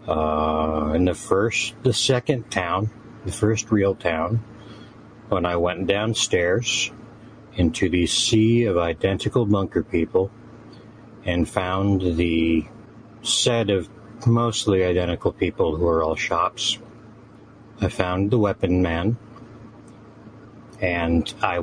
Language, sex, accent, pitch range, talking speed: English, male, American, 90-115 Hz, 115 wpm